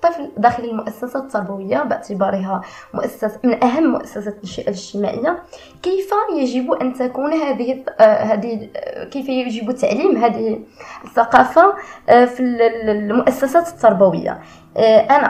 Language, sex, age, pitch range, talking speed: Arabic, female, 20-39, 220-290 Hz, 95 wpm